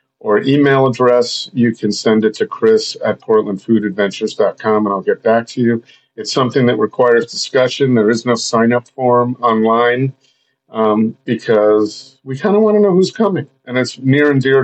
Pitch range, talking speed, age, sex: 110-140 Hz, 175 wpm, 50-69, male